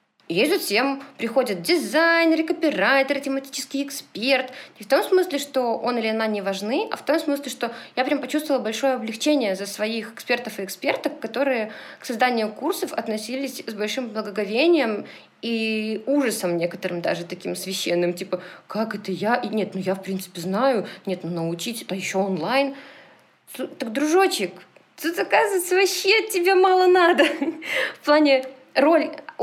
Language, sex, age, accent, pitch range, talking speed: Russian, female, 20-39, native, 210-280 Hz, 150 wpm